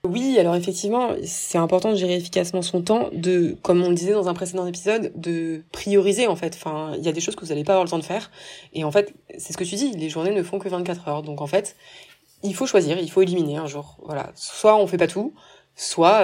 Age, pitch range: 20-39, 155-190 Hz